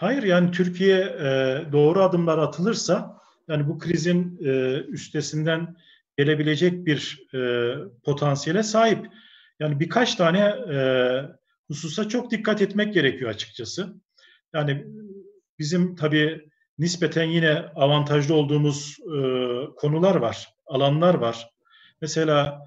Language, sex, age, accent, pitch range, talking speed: Turkish, male, 40-59, native, 135-185 Hz, 95 wpm